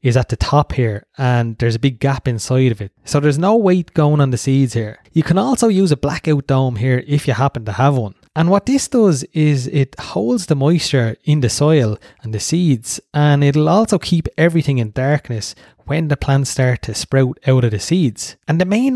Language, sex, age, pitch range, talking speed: English, male, 20-39, 125-165 Hz, 225 wpm